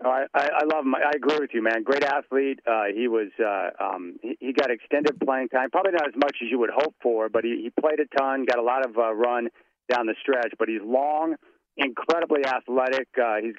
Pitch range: 115-135 Hz